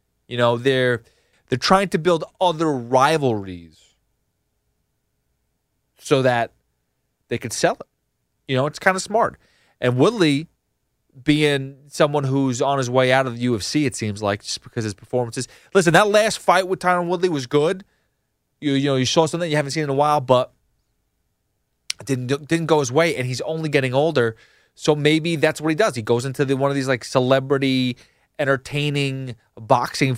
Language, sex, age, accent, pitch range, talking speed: English, male, 30-49, American, 125-155 Hz, 180 wpm